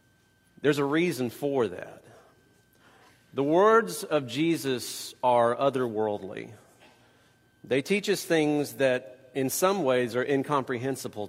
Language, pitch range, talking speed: English, 130-195 Hz, 110 wpm